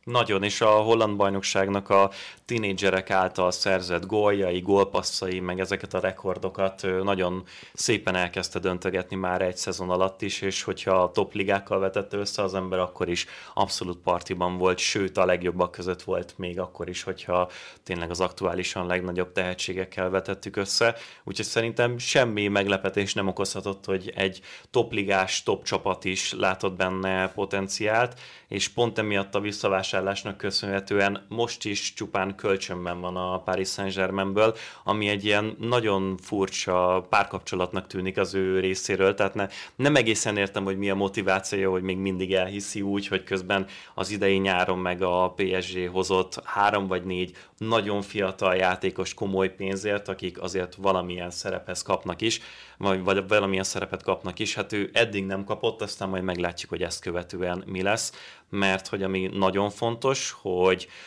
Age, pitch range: 30-49, 95-100 Hz